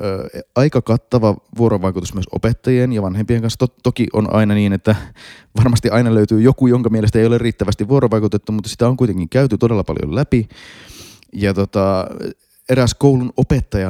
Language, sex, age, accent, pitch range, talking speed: Finnish, male, 30-49, native, 90-125 Hz, 155 wpm